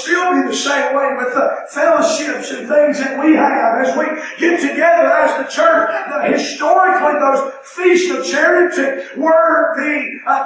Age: 50-69